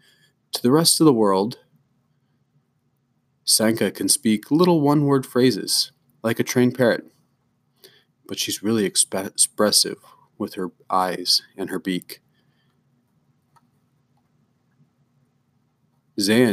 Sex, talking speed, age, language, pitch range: male, 100 wpm, 30-49, English, 95-120 Hz